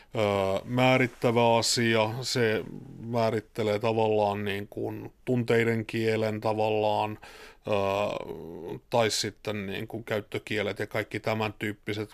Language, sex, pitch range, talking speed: Finnish, male, 105-115 Hz, 105 wpm